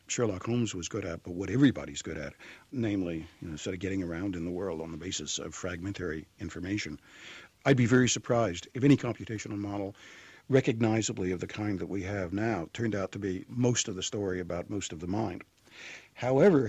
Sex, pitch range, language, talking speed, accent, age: male, 95-125 Hz, English, 200 wpm, American, 60-79